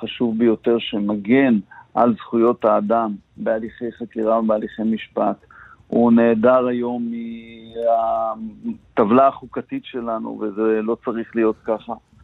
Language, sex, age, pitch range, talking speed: English, male, 50-69, 110-125 Hz, 105 wpm